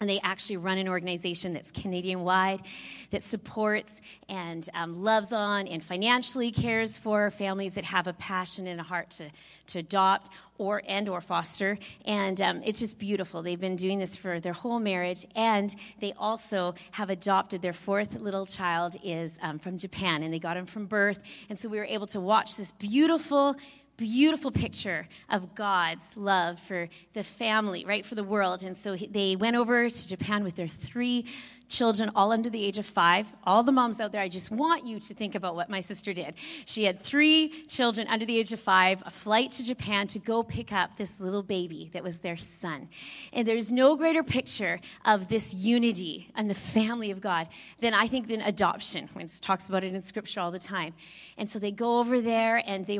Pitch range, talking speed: 185-225 Hz, 200 wpm